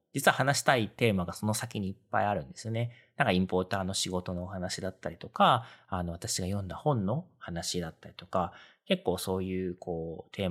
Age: 40-59